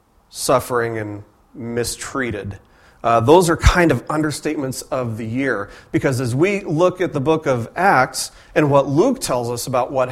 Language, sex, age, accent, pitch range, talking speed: English, male, 40-59, American, 120-155 Hz, 165 wpm